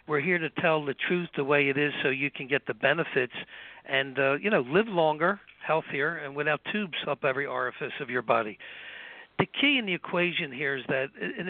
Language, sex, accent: English, male, American